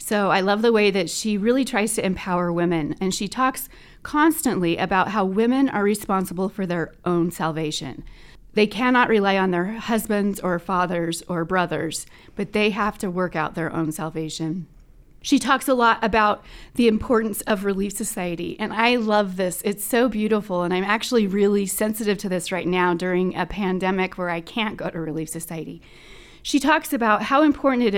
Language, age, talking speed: English, 30-49, 185 wpm